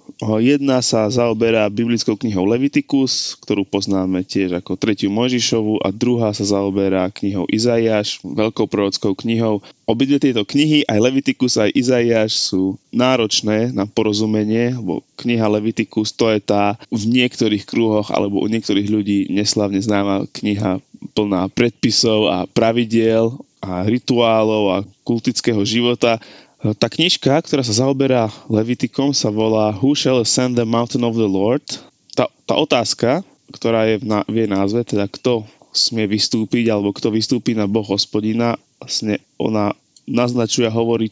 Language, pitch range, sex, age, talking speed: Slovak, 105-120 Hz, male, 20-39, 140 wpm